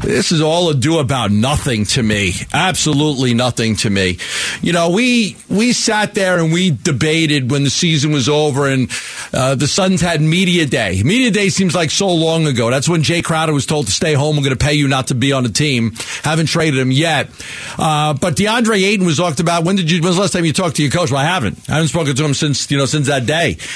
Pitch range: 145-205 Hz